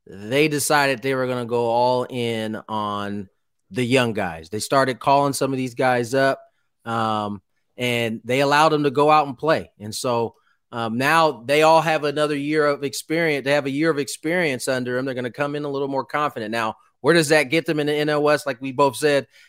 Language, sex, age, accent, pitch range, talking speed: English, male, 30-49, American, 130-160 Hz, 220 wpm